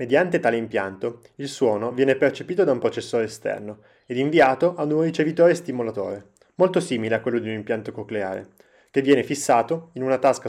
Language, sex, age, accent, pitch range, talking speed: Italian, male, 20-39, native, 110-145 Hz, 175 wpm